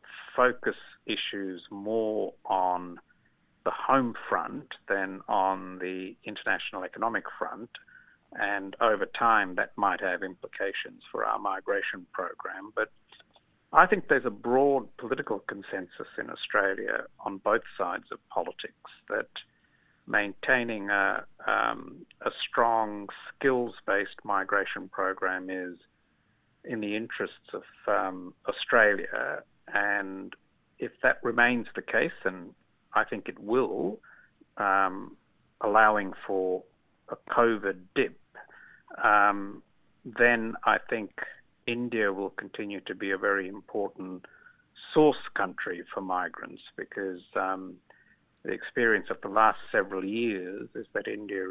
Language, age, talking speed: Malayalam, 50-69, 115 wpm